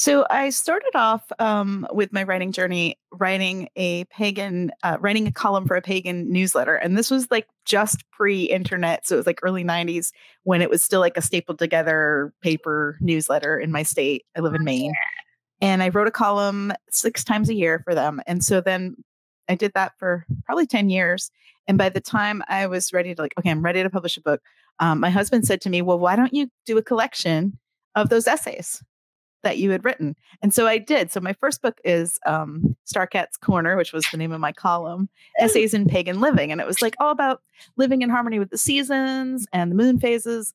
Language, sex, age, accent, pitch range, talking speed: English, female, 30-49, American, 170-220 Hz, 215 wpm